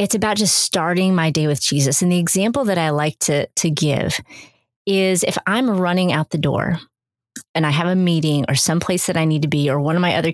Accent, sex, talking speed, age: American, female, 240 wpm, 30-49